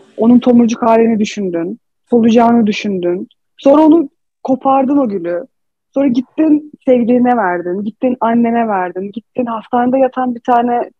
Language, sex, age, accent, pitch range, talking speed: Turkish, female, 30-49, native, 225-290 Hz, 125 wpm